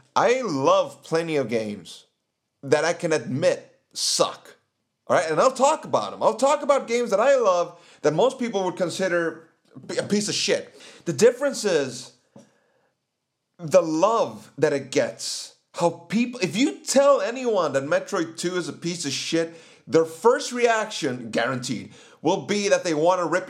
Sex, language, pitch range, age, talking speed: male, English, 150-240 Hz, 30-49, 165 wpm